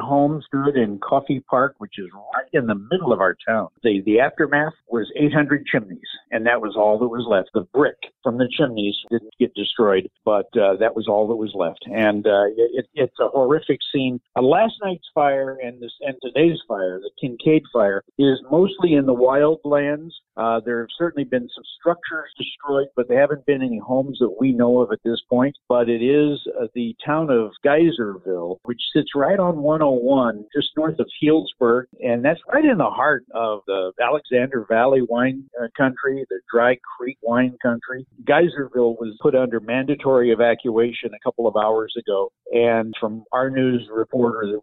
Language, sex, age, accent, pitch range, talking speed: English, male, 50-69, American, 115-145 Hz, 190 wpm